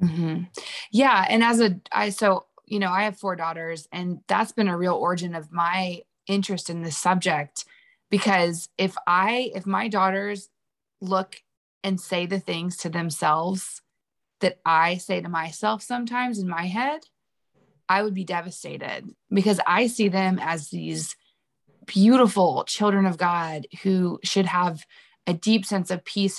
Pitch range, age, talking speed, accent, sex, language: 170-205 Hz, 20-39, 160 wpm, American, female, English